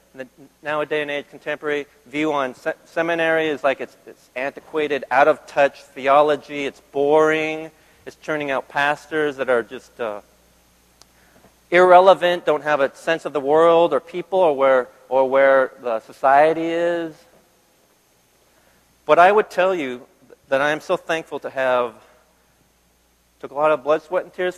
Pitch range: 130-170 Hz